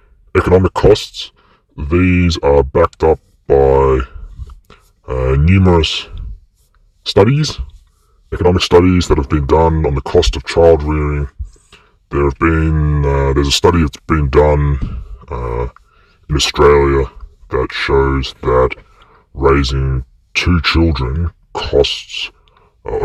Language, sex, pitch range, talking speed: English, female, 70-85 Hz, 110 wpm